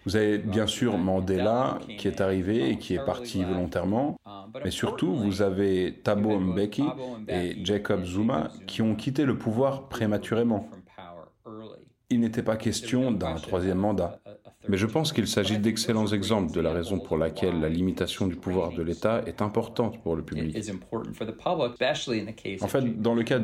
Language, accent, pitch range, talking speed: French, French, 90-110 Hz, 160 wpm